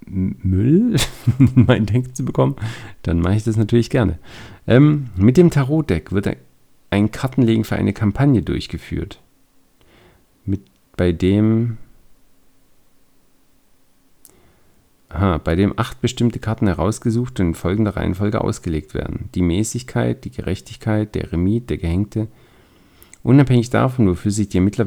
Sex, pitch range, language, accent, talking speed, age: male, 90-115 Hz, German, German, 125 wpm, 50-69